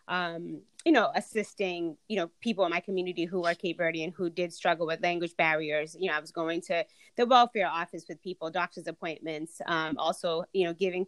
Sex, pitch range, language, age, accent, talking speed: female, 170-195 Hz, English, 20-39, American, 205 wpm